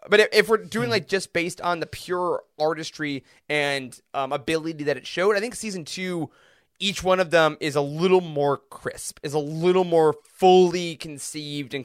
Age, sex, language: 20-39, male, English